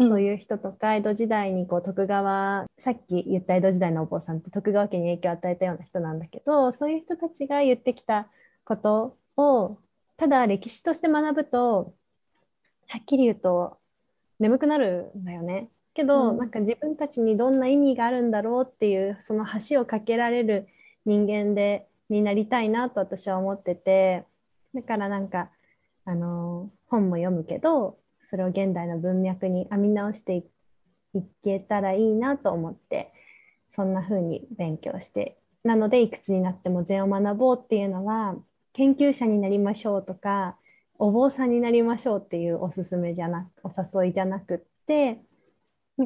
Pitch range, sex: 185-235 Hz, female